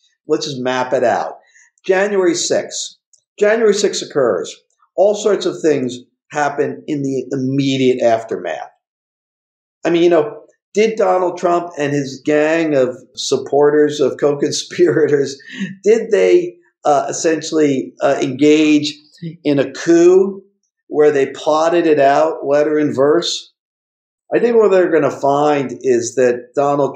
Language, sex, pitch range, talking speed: English, male, 130-185 Hz, 135 wpm